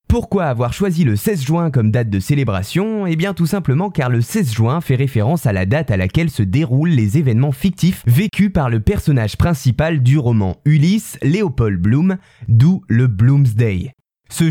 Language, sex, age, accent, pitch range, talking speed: French, male, 20-39, French, 120-175 Hz, 180 wpm